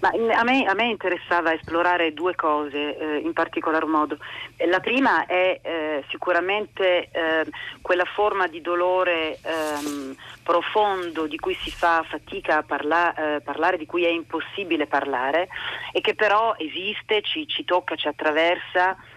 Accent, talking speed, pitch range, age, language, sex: native, 150 wpm, 155-200 Hz, 40-59, Italian, female